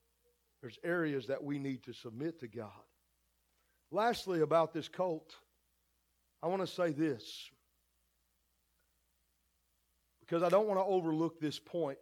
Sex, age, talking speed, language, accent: male, 40-59, 130 wpm, English, American